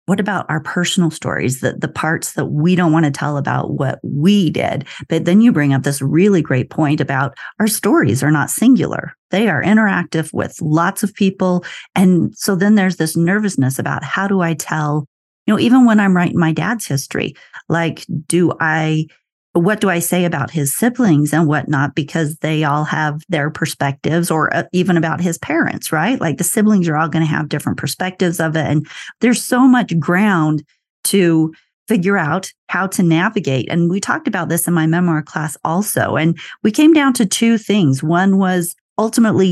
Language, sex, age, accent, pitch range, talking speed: English, female, 40-59, American, 155-195 Hz, 190 wpm